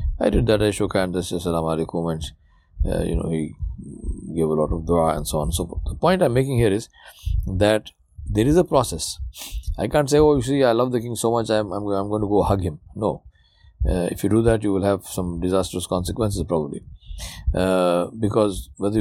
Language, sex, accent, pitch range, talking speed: English, male, Indian, 90-120 Hz, 215 wpm